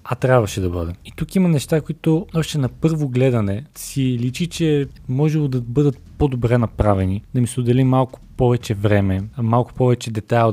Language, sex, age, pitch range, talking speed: Bulgarian, male, 20-39, 110-145 Hz, 170 wpm